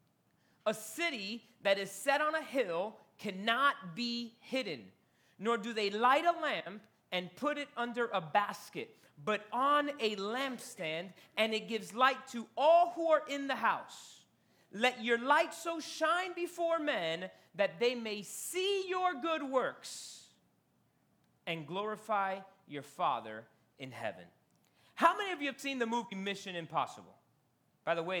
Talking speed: 150 wpm